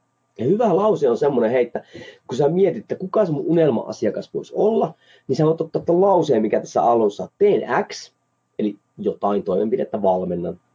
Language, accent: Finnish, native